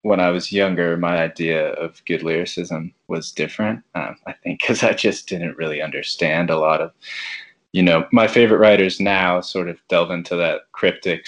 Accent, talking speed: American, 185 wpm